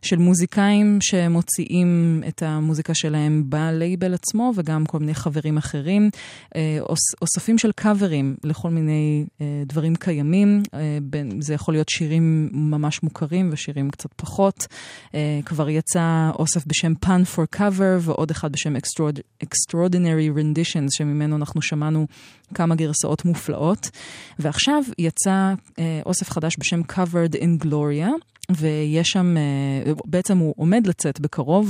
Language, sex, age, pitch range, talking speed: Hebrew, female, 20-39, 150-180 Hz, 130 wpm